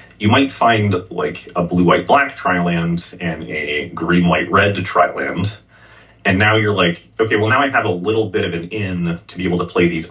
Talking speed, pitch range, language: 190 wpm, 85-100 Hz, English